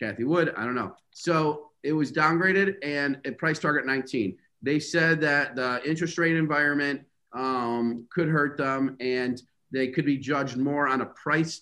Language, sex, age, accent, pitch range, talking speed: English, male, 40-59, American, 130-150 Hz, 175 wpm